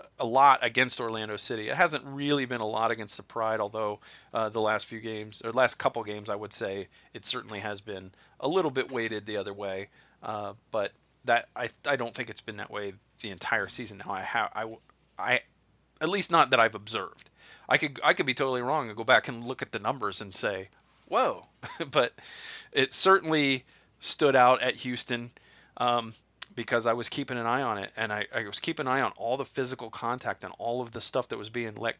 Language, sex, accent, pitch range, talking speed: English, male, American, 110-135 Hz, 220 wpm